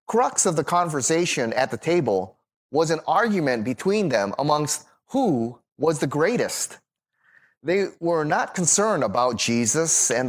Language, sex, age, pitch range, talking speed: English, male, 30-49, 125-165 Hz, 140 wpm